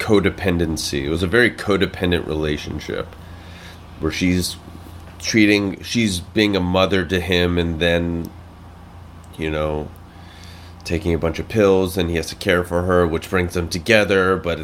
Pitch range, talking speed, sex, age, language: 85-95 Hz, 150 wpm, male, 30-49, English